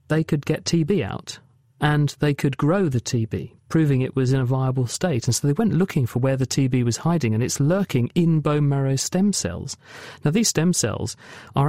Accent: British